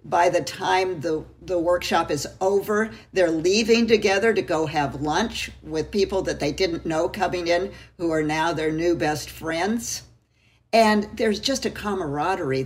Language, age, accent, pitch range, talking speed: English, 50-69, American, 150-200 Hz, 165 wpm